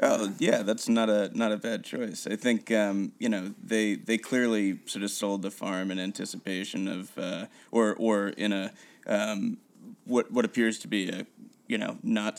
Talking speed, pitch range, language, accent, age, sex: 195 wpm, 100-145 Hz, English, American, 30-49, male